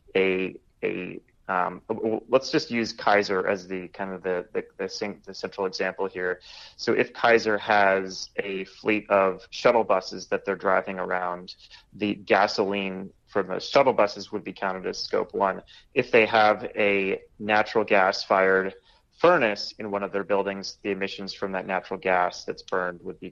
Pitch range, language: 95-110 Hz, English